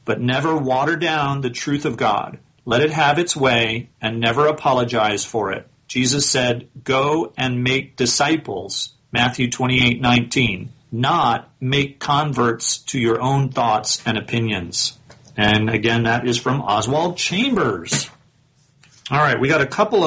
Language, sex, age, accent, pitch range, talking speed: English, male, 40-59, American, 125-145 Hz, 145 wpm